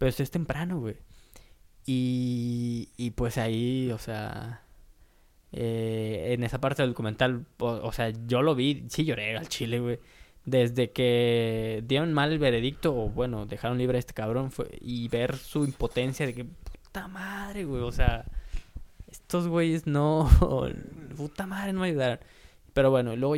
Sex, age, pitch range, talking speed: male, 20-39, 115-140 Hz, 160 wpm